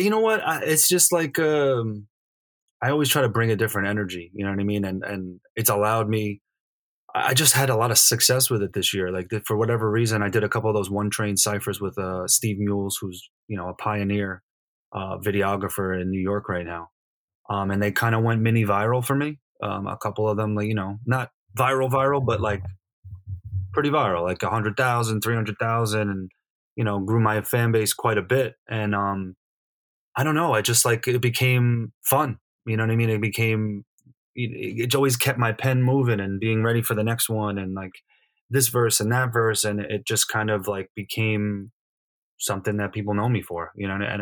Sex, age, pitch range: male, 20-39, 100-120 Hz